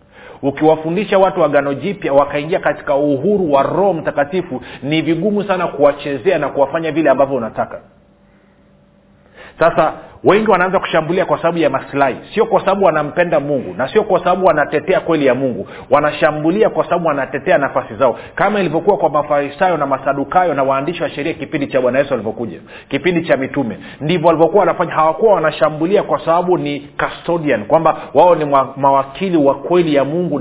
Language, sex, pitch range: Swahili, male, 140-175 Hz